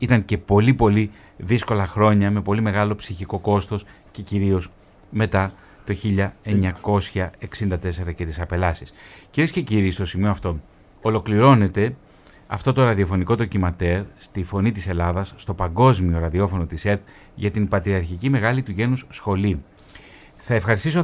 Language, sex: Greek, male